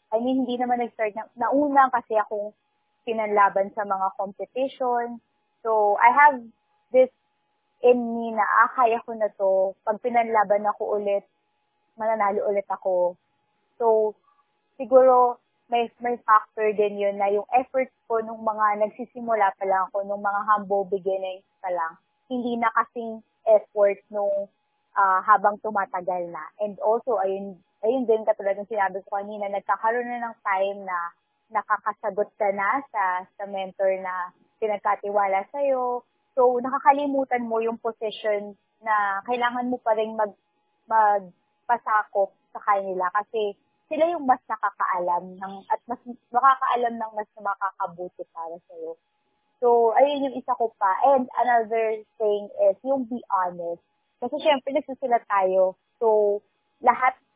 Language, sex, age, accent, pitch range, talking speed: Filipino, female, 20-39, native, 200-245 Hz, 140 wpm